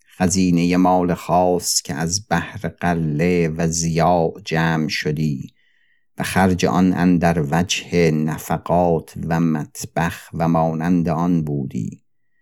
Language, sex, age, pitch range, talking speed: Persian, male, 50-69, 80-95 Hz, 110 wpm